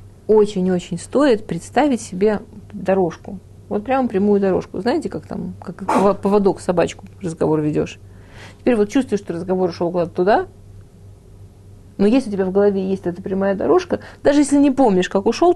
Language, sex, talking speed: Russian, female, 160 wpm